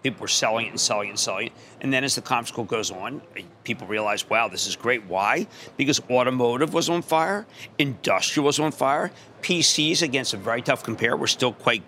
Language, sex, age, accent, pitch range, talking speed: English, male, 50-69, American, 125-160 Hz, 215 wpm